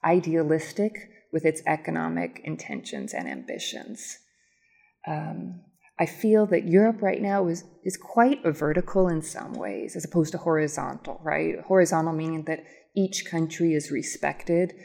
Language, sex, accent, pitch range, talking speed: English, female, American, 165-200 Hz, 135 wpm